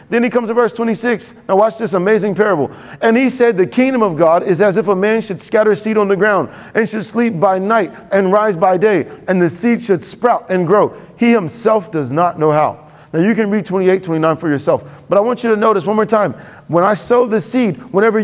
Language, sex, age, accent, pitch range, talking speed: English, male, 40-59, American, 135-210 Hz, 245 wpm